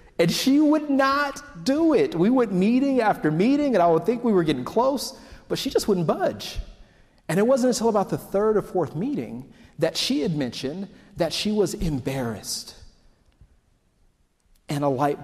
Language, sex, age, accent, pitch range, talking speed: English, male, 40-59, American, 145-200 Hz, 175 wpm